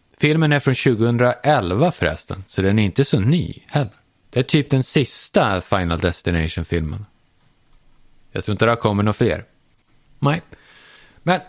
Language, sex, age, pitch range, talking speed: Swedish, male, 30-49, 100-145 Hz, 150 wpm